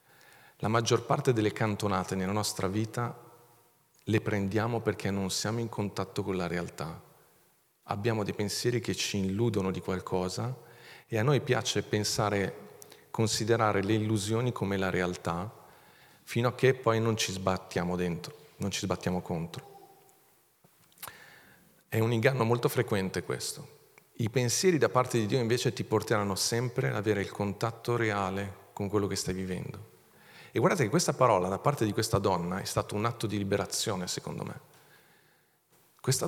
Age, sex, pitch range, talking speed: 40-59, male, 100-120 Hz, 155 wpm